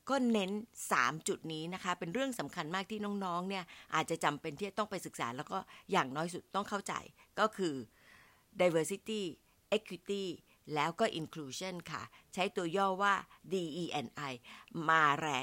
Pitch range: 160-215 Hz